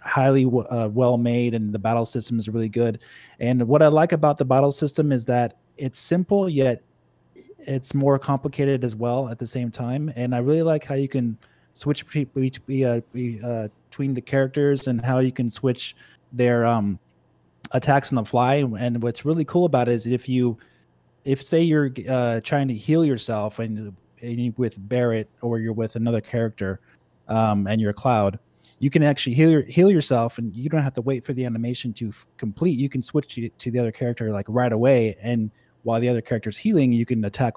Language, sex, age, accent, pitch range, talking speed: English, male, 20-39, American, 110-135 Hz, 200 wpm